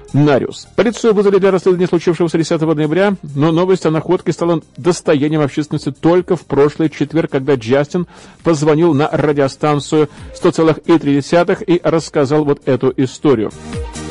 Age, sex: 40-59, male